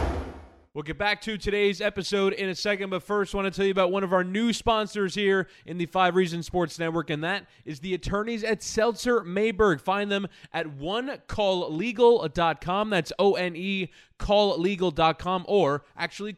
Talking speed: 170 wpm